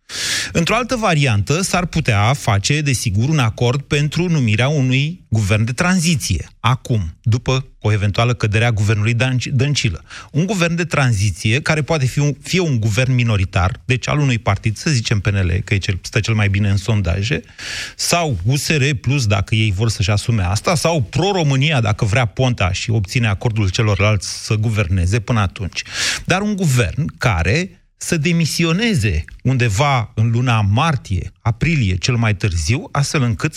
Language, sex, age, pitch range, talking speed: Romanian, male, 30-49, 110-145 Hz, 155 wpm